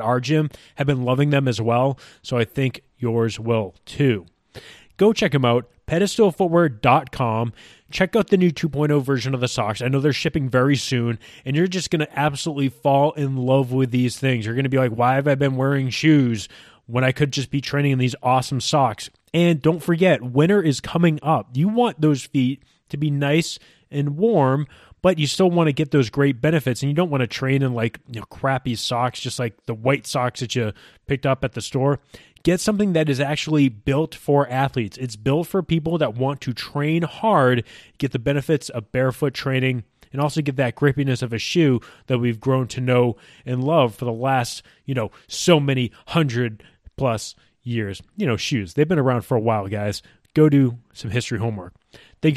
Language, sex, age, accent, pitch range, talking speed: English, male, 20-39, American, 120-150 Hz, 205 wpm